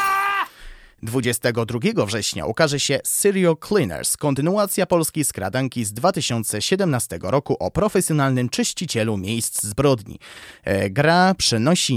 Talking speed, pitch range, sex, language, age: 95 wpm, 110-180 Hz, male, Polish, 30-49